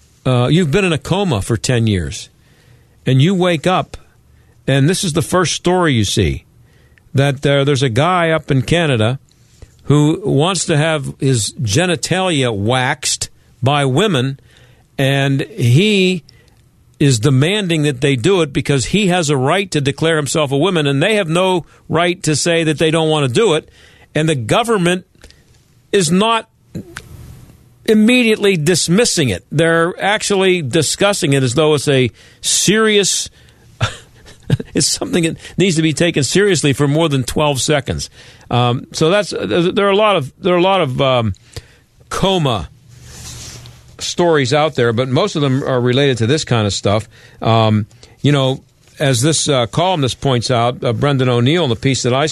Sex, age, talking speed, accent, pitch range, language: male, 50-69, 165 wpm, American, 125-170 Hz, English